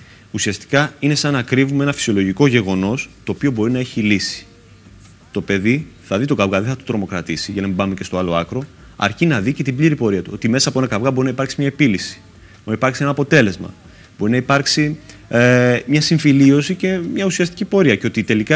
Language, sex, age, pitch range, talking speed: Greek, male, 30-49, 100-135 Hz, 220 wpm